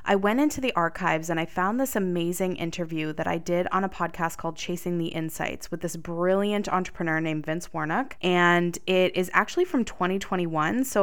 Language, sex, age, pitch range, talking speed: English, female, 20-39, 170-205 Hz, 190 wpm